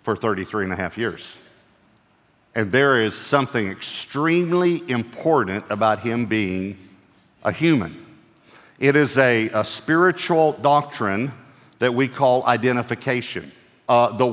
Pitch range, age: 115-140 Hz, 50-69